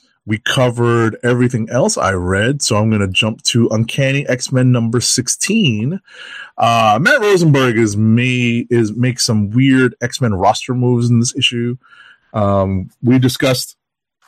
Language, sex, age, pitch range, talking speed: English, male, 30-49, 105-130 Hz, 145 wpm